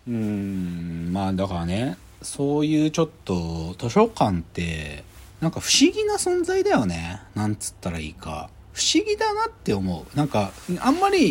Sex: male